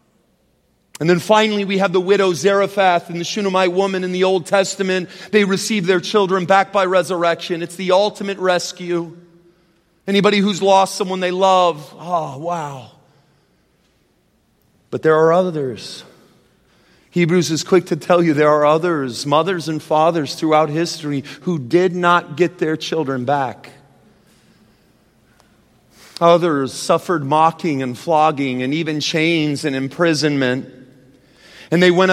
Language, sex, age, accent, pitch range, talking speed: English, male, 40-59, American, 165-210 Hz, 135 wpm